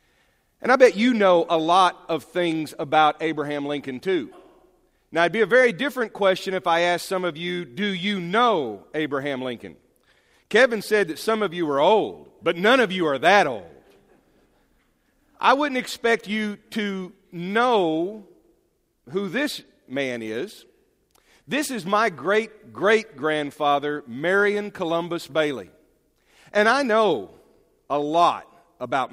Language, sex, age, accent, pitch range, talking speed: English, male, 40-59, American, 155-210 Hz, 140 wpm